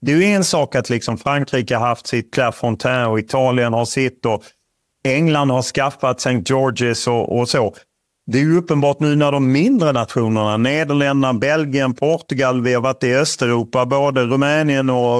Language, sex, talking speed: Swedish, male, 170 wpm